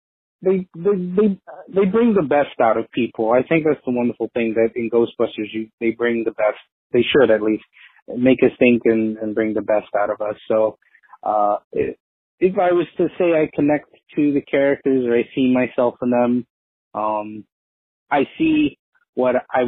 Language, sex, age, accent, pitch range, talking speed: English, male, 30-49, American, 110-140 Hz, 190 wpm